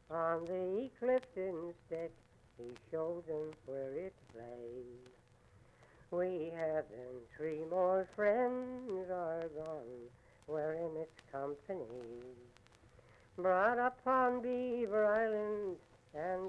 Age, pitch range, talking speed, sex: 60-79, 125-190 Hz, 100 wpm, female